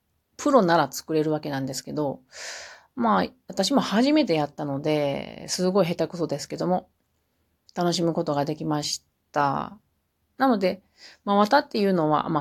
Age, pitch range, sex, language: 40-59, 140-200 Hz, female, Japanese